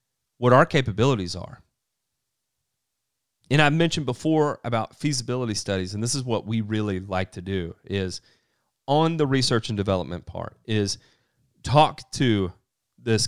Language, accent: English, American